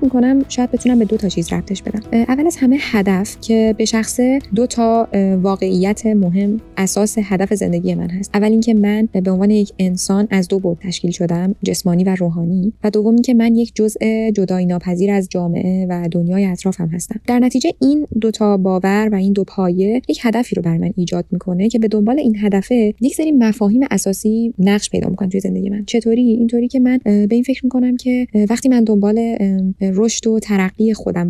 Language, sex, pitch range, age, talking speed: Persian, female, 195-235 Hz, 20-39, 195 wpm